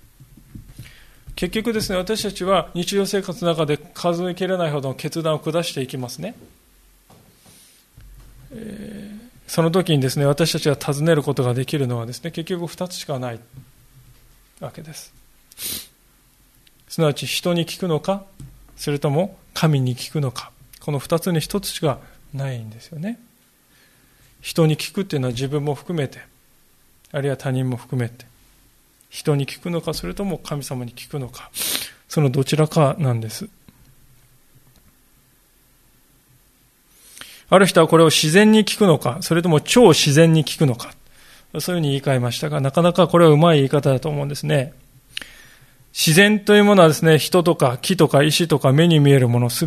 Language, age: Japanese, 20-39